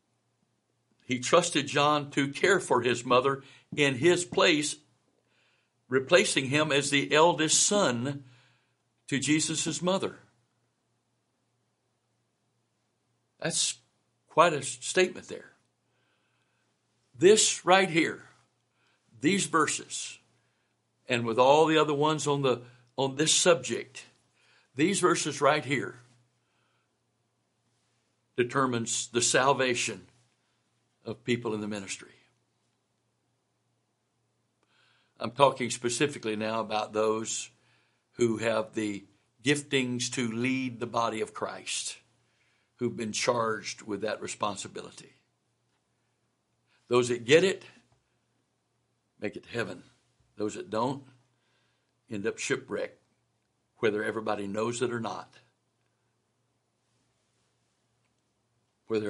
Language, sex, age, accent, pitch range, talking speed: English, male, 60-79, American, 115-145 Hz, 95 wpm